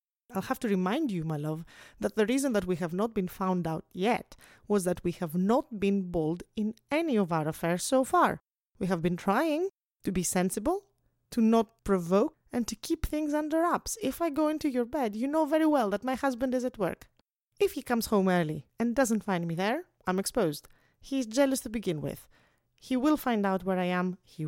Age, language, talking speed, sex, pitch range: 30-49, English, 220 wpm, female, 185-265 Hz